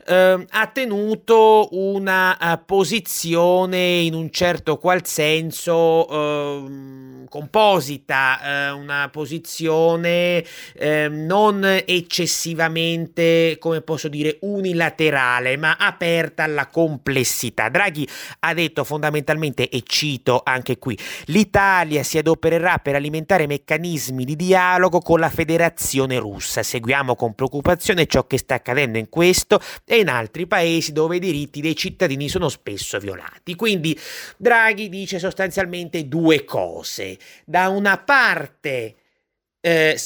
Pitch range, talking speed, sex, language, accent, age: 140-180 Hz, 110 wpm, male, Italian, native, 30-49